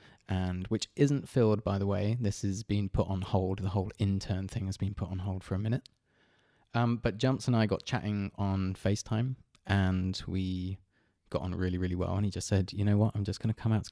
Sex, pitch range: male, 90-105 Hz